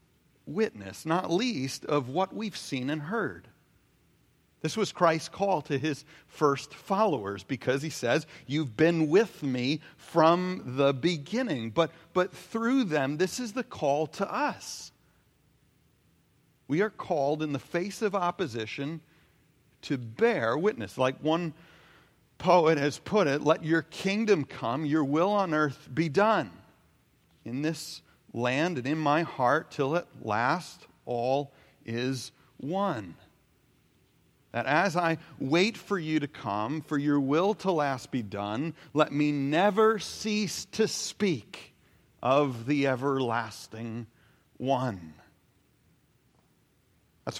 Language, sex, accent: English, male, American